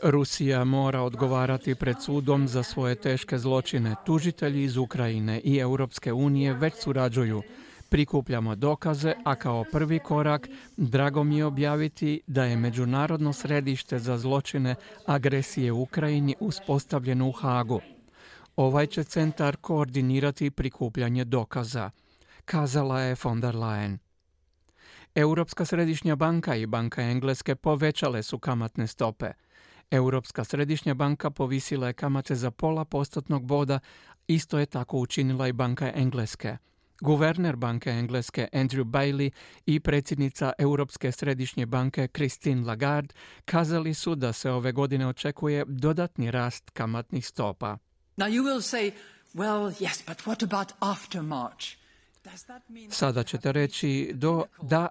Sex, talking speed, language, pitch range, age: male, 115 wpm, Croatian, 125-150 Hz, 50-69